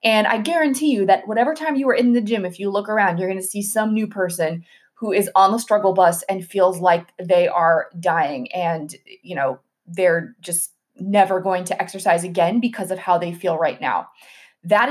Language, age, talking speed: English, 20-39, 215 wpm